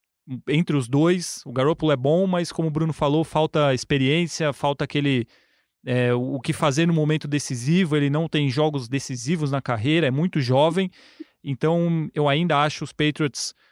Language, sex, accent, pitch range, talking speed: Portuguese, male, Brazilian, 135-155 Hz, 170 wpm